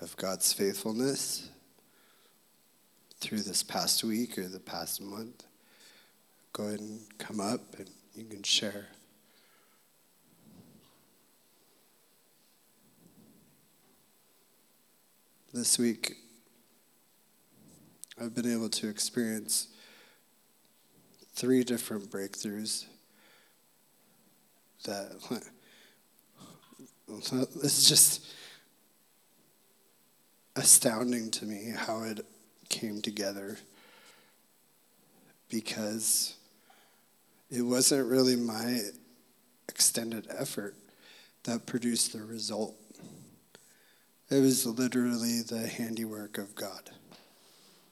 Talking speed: 75 wpm